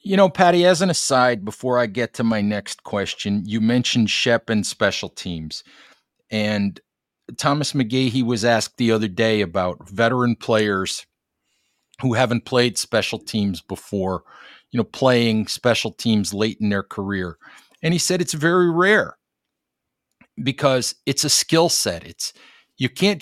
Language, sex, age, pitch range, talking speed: English, male, 50-69, 105-135 Hz, 155 wpm